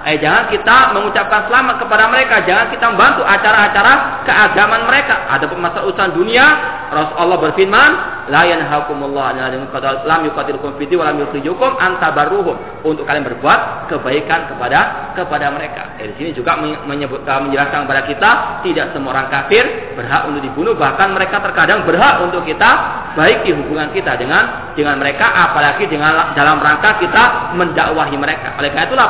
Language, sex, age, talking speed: Malay, male, 40-59, 140 wpm